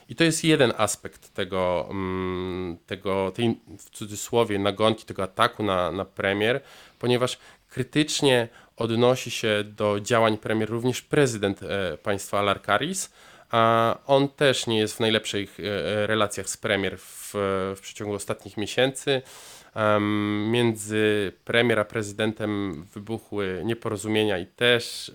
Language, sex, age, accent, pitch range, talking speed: Polish, male, 20-39, native, 105-125 Hz, 120 wpm